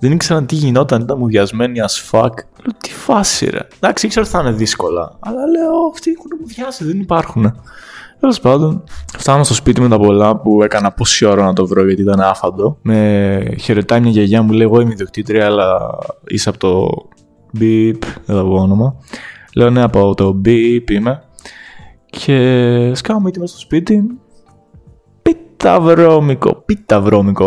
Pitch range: 105-160 Hz